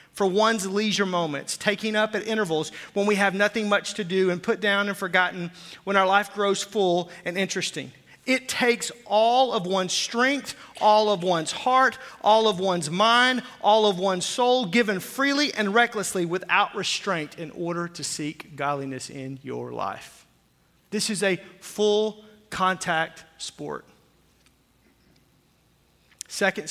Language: English